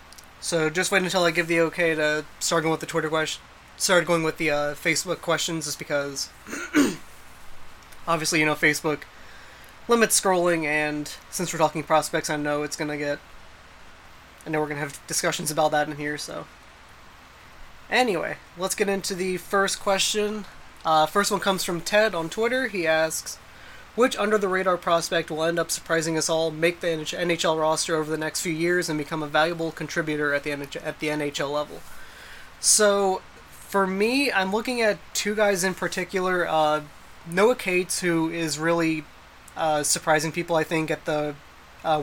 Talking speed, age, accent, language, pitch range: 175 wpm, 20-39, American, English, 155-180 Hz